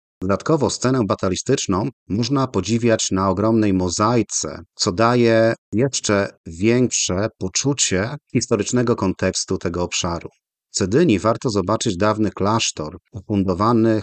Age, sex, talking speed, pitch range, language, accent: 40-59, male, 105 wpm, 95-120 Hz, Polish, native